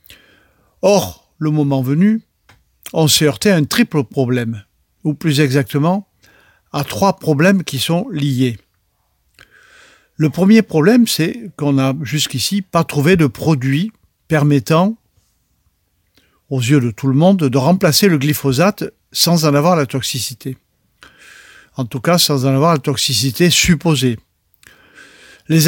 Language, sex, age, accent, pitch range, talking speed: French, male, 50-69, French, 135-175 Hz, 135 wpm